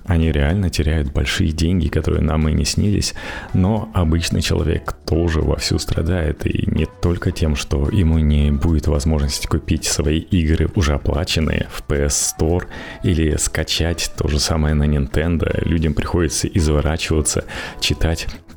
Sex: male